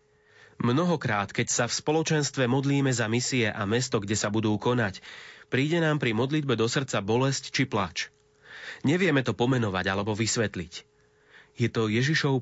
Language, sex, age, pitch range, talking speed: Slovak, male, 30-49, 115-140 Hz, 150 wpm